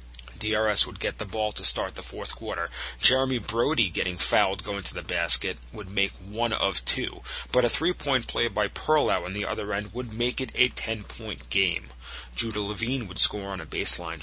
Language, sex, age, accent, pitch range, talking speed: English, male, 30-49, American, 95-125 Hz, 195 wpm